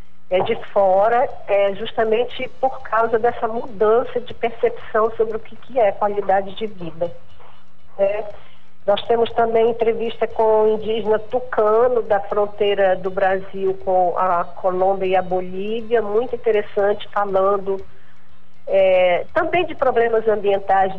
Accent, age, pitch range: Brazilian, 40-59, 195-230 Hz